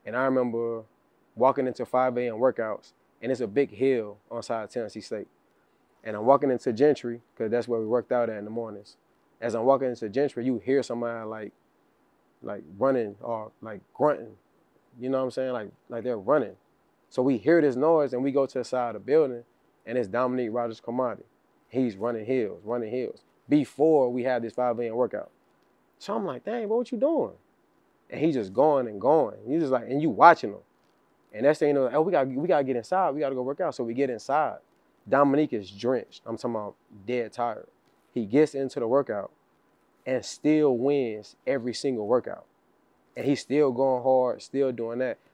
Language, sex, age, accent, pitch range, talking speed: English, male, 20-39, American, 115-135 Hz, 210 wpm